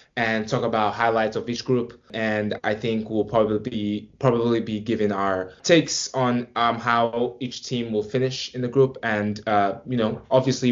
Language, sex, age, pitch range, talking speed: English, male, 20-39, 110-130 Hz, 185 wpm